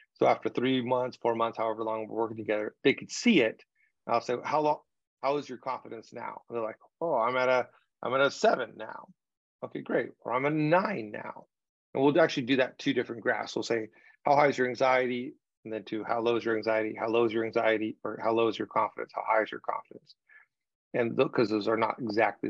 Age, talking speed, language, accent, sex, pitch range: 30-49, 235 wpm, English, American, male, 115-140 Hz